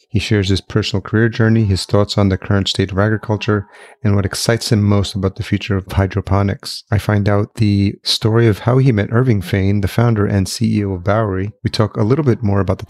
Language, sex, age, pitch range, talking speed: English, male, 30-49, 95-115 Hz, 230 wpm